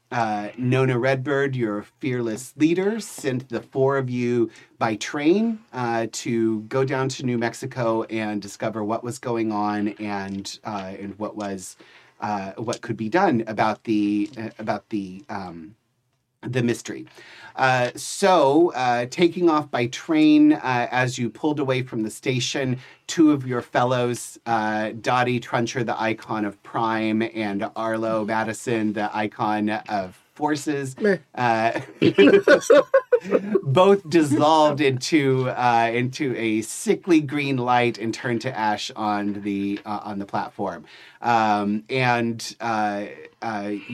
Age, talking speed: 30-49, 135 wpm